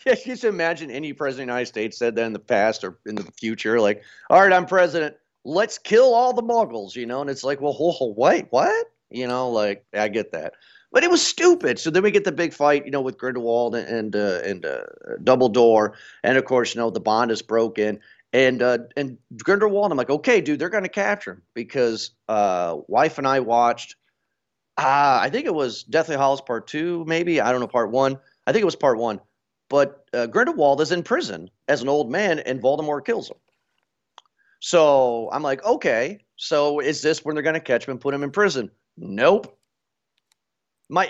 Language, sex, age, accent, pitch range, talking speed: English, male, 40-59, American, 120-170 Hz, 215 wpm